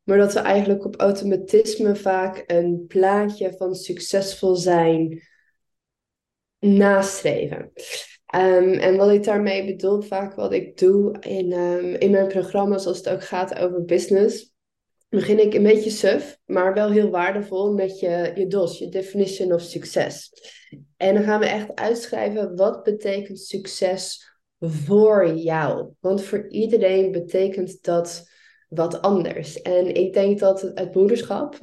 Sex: female